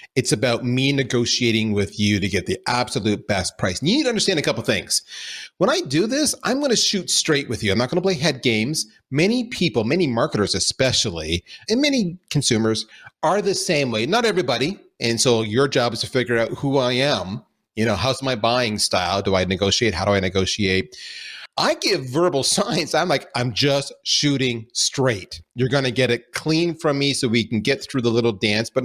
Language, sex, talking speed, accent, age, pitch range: English, male, 210 wpm, American, 30-49, 110-155 Hz